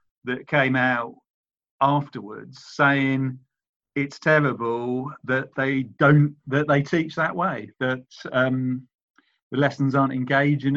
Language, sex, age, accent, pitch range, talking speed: English, male, 40-59, British, 115-140 Hz, 115 wpm